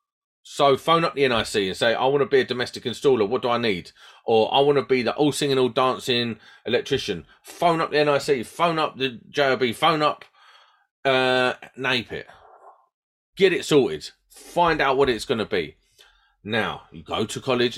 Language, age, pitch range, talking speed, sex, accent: English, 30-49, 120-180 Hz, 180 wpm, male, British